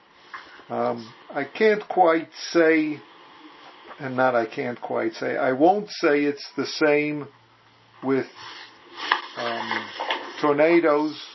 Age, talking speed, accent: 50-69, 105 wpm, American